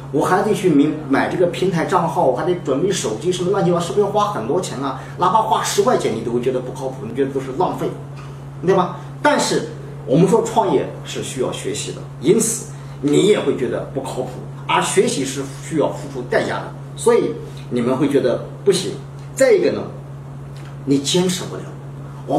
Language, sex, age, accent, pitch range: Chinese, male, 40-59, native, 140-210 Hz